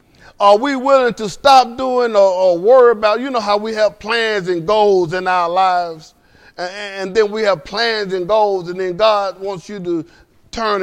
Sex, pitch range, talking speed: male, 140-215 Hz, 200 wpm